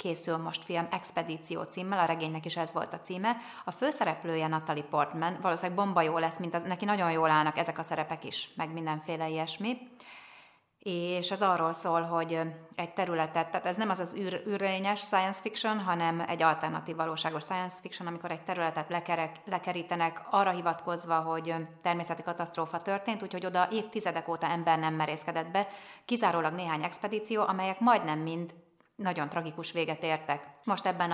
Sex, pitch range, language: female, 165-190 Hz, Hungarian